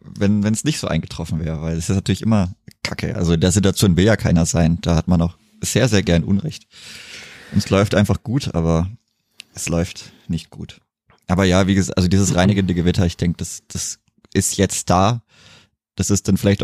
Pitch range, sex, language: 90-115 Hz, male, German